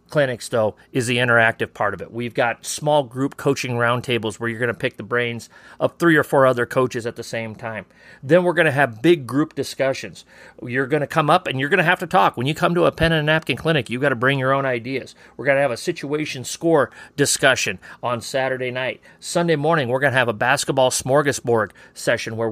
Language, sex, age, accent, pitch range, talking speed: English, male, 40-59, American, 125-155 Hz, 235 wpm